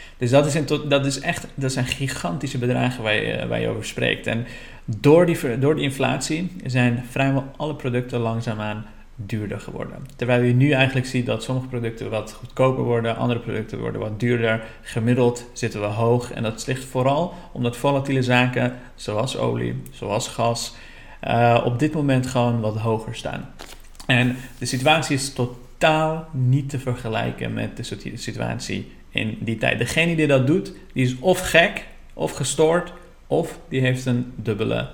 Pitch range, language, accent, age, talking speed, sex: 115-135 Hz, Dutch, Dutch, 40-59, 170 wpm, male